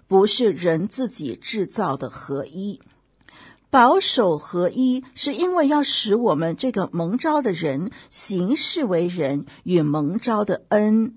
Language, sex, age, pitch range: Chinese, female, 50-69, 175-235 Hz